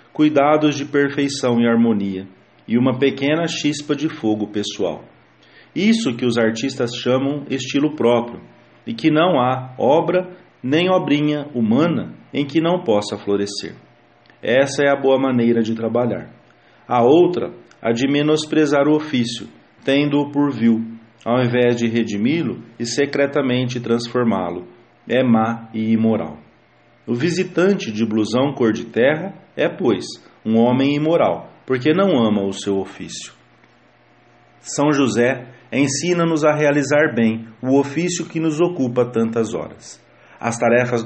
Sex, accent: male, Brazilian